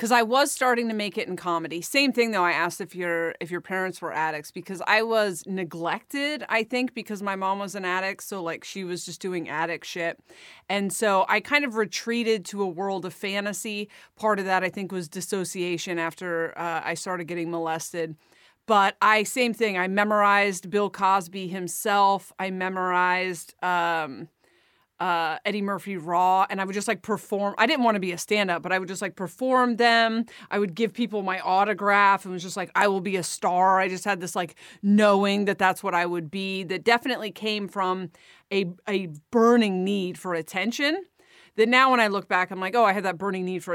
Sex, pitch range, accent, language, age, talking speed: female, 180-210 Hz, American, English, 30-49, 210 wpm